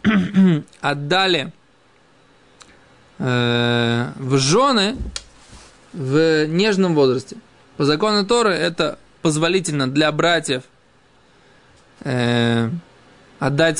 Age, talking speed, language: 20-39, 70 wpm, Russian